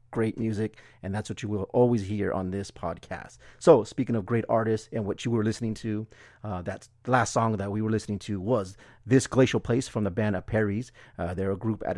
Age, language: 30-49, English